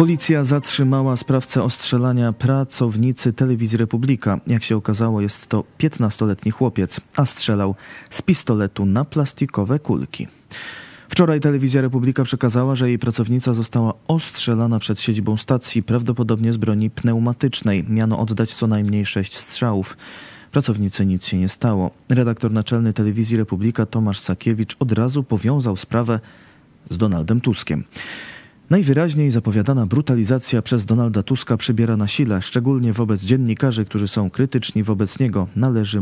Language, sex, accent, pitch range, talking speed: Polish, male, native, 105-130 Hz, 130 wpm